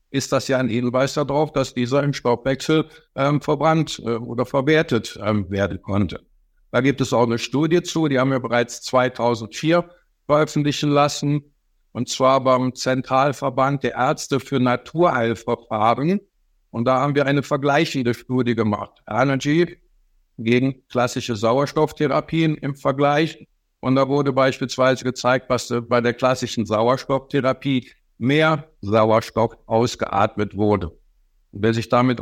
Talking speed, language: 130 wpm, German